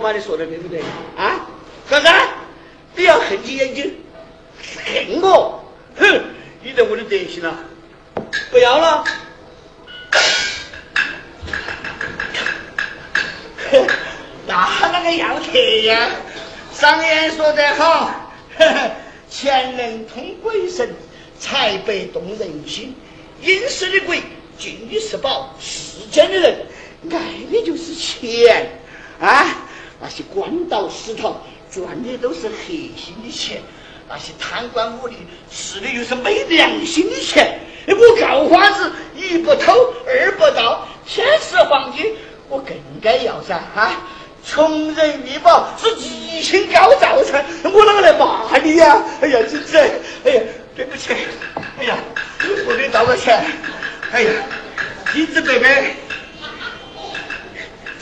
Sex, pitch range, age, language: male, 265-400 Hz, 50-69, Chinese